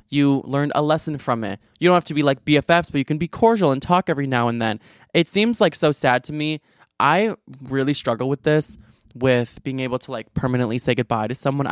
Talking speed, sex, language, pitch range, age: 235 wpm, male, English, 120-145 Hz, 20-39